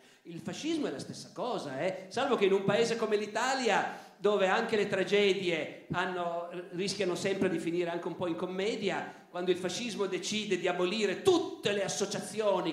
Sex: male